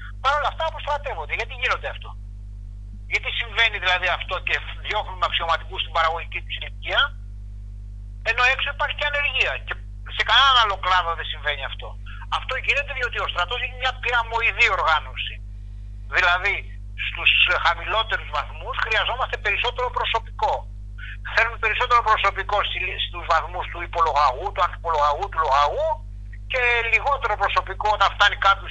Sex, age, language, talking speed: male, 60-79, Greek, 135 wpm